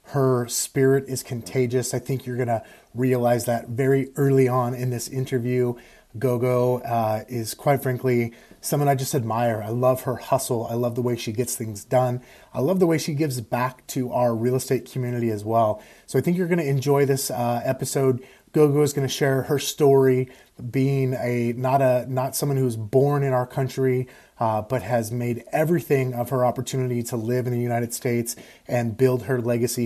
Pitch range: 120-135 Hz